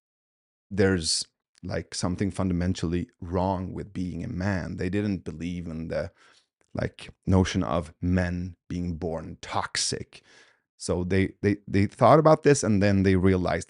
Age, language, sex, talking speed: 30-49, English, male, 140 wpm